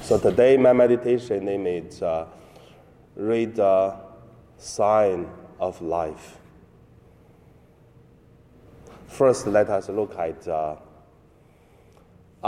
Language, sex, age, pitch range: Chinese, male, 30-49, 85-120 Hz